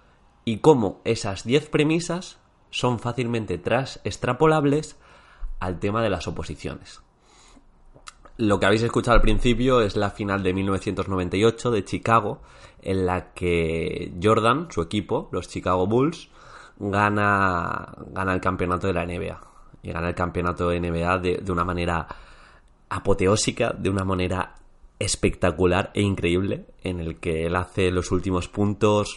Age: 20-39